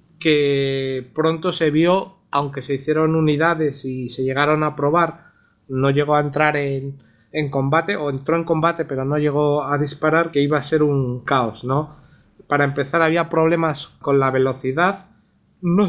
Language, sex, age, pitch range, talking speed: Spanish, male, 30-49, 140-160 Hz, 165 wpm